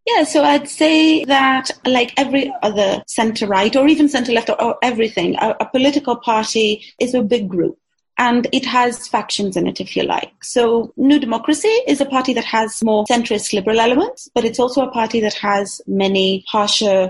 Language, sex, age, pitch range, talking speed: English, female, 30-49, 200-250 Hz, 185 wpm